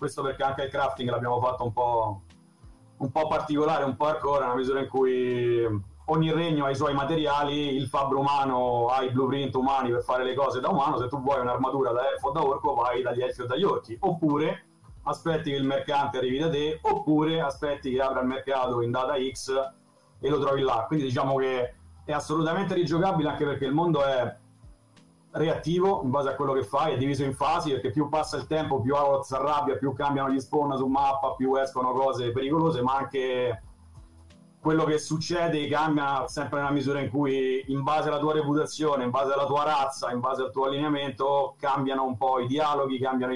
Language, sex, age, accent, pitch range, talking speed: Italian, male, 40-59, native, 125-145 Hz, 200 wpm